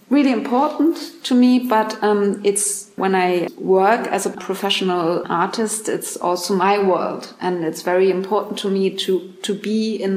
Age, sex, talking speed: 30-49, female, 165 wpm